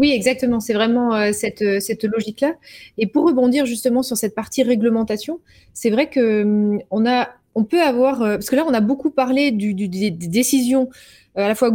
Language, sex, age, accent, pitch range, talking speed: French, female, 20-39, French, 210-260 Hz, 210 wpm